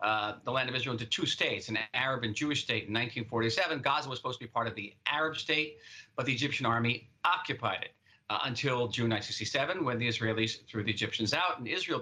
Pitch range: 110-140 Hz